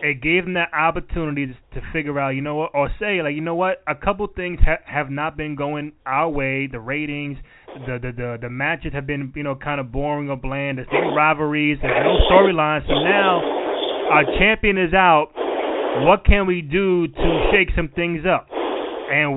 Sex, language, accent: male, English, American